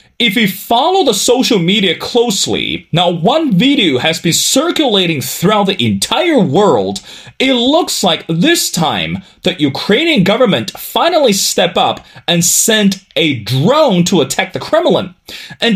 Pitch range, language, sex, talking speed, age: 170-245 Hz, English, male, 140 wpm, 30-49